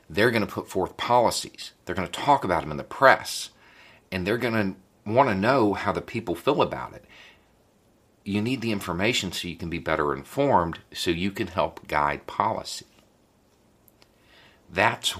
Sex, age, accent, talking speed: male, 50-69, American, 180 wpm